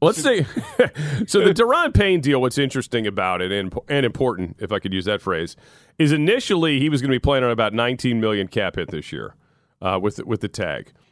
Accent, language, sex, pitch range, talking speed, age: American, English, male, 95-130 Hz, 215 wpm, 40-59